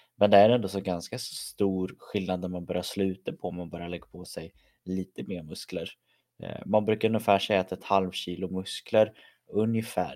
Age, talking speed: 20-39, 190 wpm